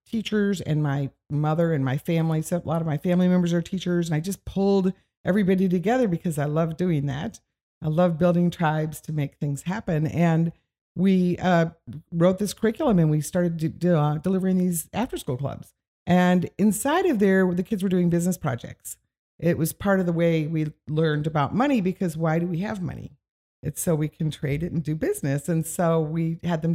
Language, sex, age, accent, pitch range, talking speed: English, female, 50-69, American, 155-185 Hz, 205 wpm